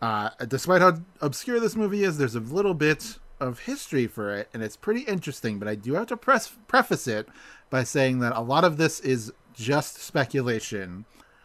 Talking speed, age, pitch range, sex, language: 190 wpm, 30-49, 120-160 Hz, male, English